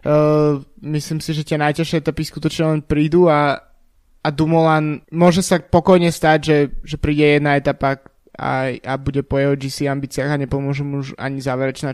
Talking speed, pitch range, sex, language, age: 175 wpm, 145-160 Hz, male, Slovak, 20-39